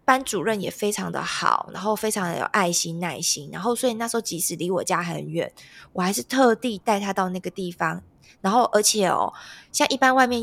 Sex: female